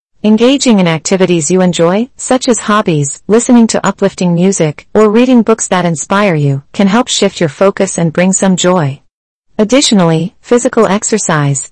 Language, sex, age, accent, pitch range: Chinese, female, 40-59, American, 165-220 Hz